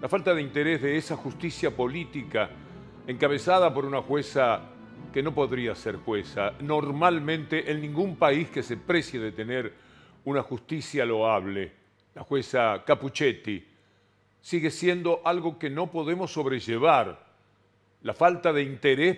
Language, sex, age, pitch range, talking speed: Spanish, male, 50-69, 130-175 Hz, 135 wpm